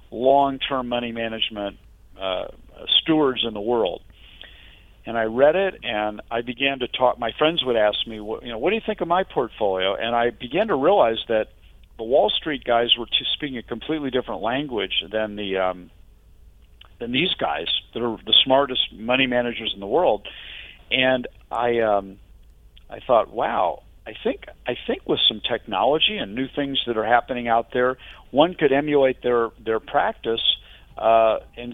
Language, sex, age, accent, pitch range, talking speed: English, male, 50-69, American, 105-135 Hz, 175 wpm